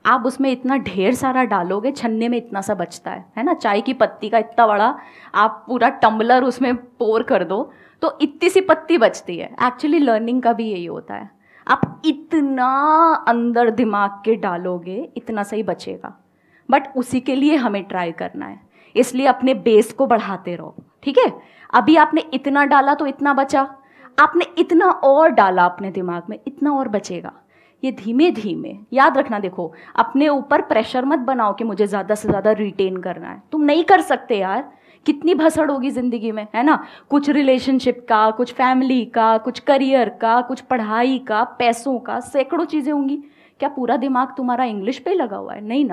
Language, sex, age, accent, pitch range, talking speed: Hindi, female, 20-39, native, 220-280 Hz, 185 wpm